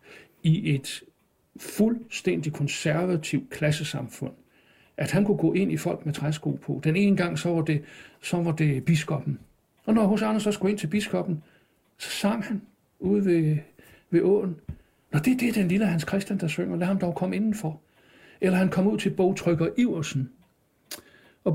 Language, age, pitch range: Danish, 60-79, 155-200 Hz